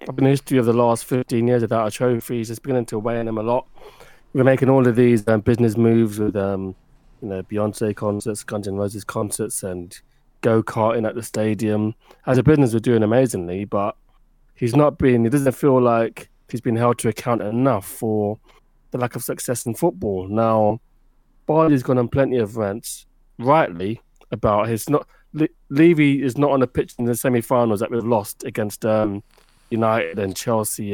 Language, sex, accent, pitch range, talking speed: English, male, British, 110-130 Hz, 200 wpm